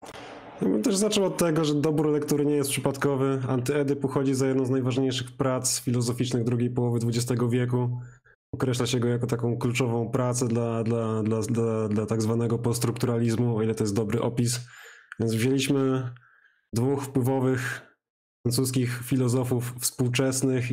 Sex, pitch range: male, 120-135 Hz